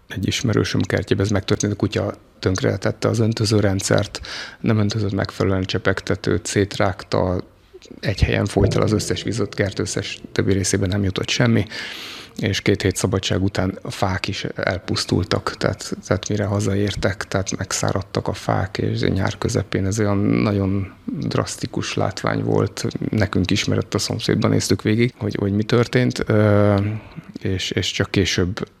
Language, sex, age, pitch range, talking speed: Hungarian, male, 30-49, 100-115 Hz, 140 wpm